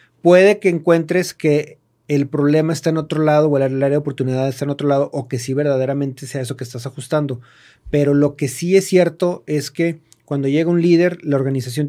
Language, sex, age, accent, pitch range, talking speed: Spanish, male, 40-59, Mexican, 135-160 Hz, 210 wpm